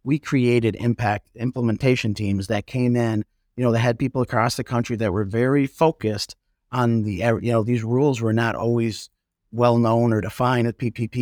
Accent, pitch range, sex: American, 110-135 Hz, male